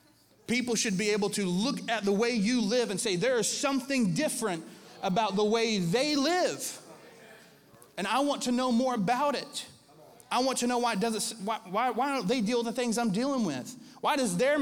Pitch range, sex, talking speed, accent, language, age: 170-240 Hz, male, 215 wpm, American, English, 30-49